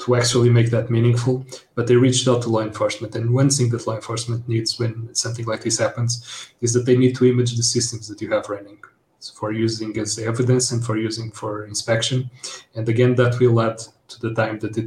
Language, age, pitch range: English, 30-49, 110-120 Hz